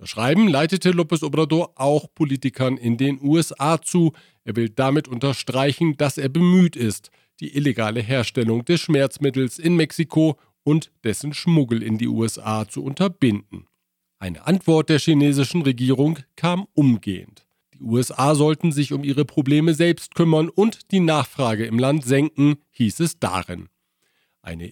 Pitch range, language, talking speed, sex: 125-165 Hz, German, 145 wpm, male